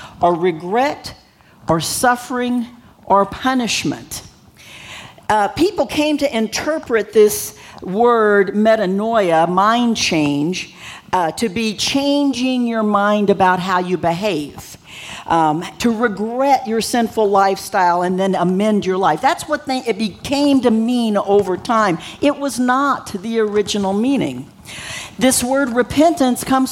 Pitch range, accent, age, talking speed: 190-260 Hz, American, 50-69, 125 wpm